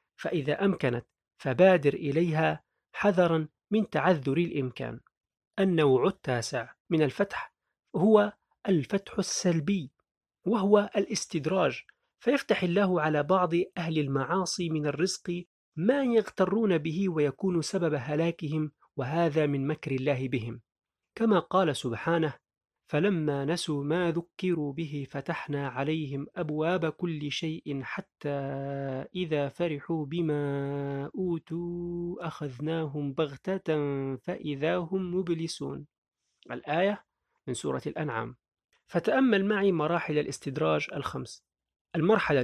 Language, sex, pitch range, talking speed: Arabic, male, 145-185 Hz, 95 wpm